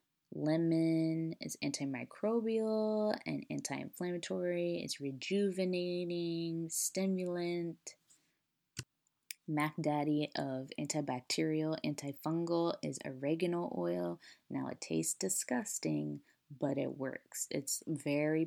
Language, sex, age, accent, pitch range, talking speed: English, female, 20-39, American, 135-170 Hz, 80 wpm